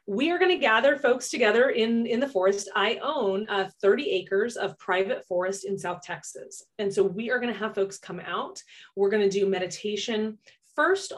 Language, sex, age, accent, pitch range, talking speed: English, female, 30-49, American, 190-245 Hz, 190 wpm